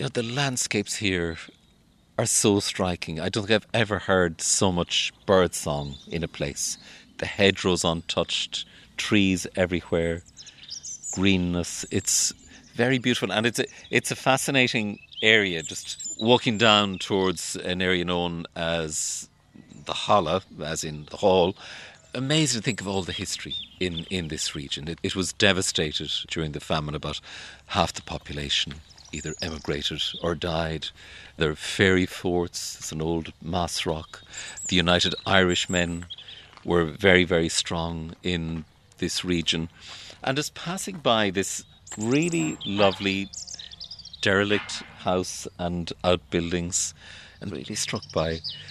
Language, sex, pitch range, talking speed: English, male, 80-105 Hz, 135 wpm